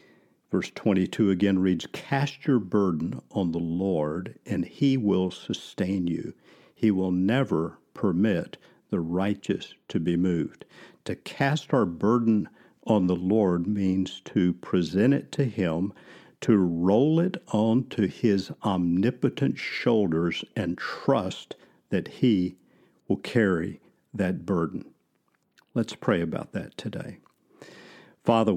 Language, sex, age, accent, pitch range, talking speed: English, male, 50-69, American, 90-115 Hz, 120 wpm